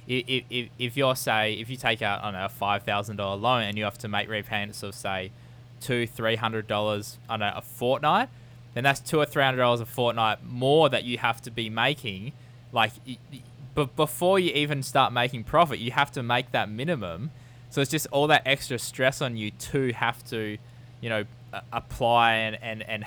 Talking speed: 185 wpm